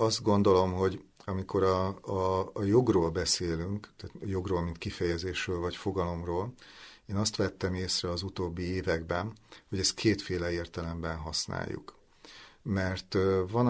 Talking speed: 125 wpm